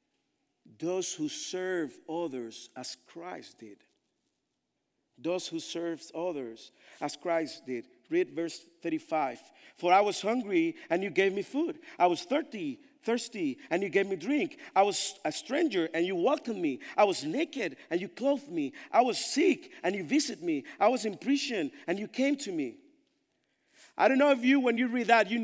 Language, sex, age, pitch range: English, male, 50-69, 195-315 Hz